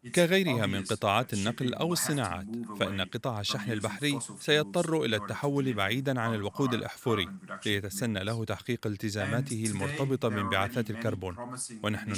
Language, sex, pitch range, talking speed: Arabic, male, 105-140 Hz, 125 wpm